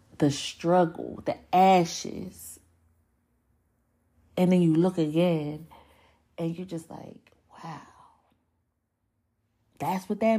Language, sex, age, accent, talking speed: English, female, 30-49, American, 100 wpm